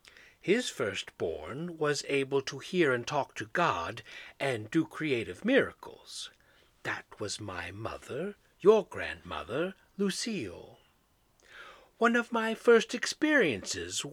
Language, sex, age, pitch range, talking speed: English, male, 60-79, 145-220 Hz, 110 wpm